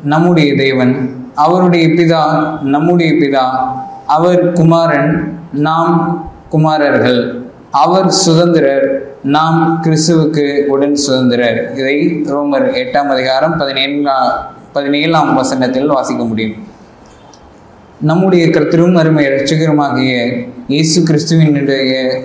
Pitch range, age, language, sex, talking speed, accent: 140-165 Hz, 20-39, Tamil, male, 85 wpm, native